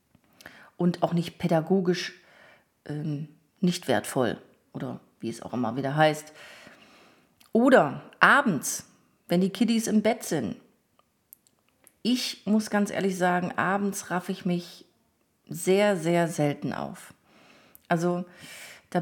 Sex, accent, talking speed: female, German, 115 wpm